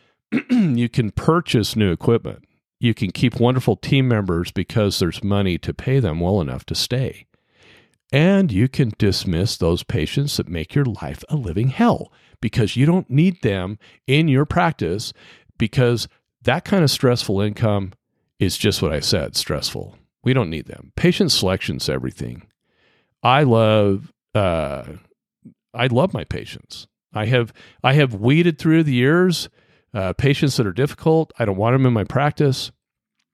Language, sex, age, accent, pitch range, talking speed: English, male, 50-69, American, 100-135 Hz, 160 wpm